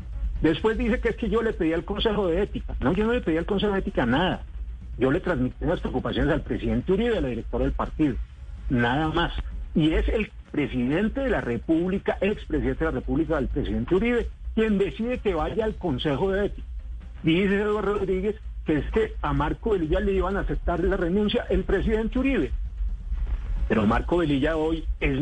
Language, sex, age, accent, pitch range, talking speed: Spanish, male, 50-69, Colombian, 135-215 Hz, 195 wpm